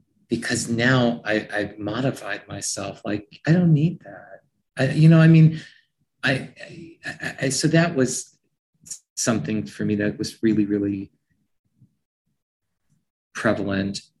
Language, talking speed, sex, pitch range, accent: English, 130 wpm, male, 115-155 Hz, American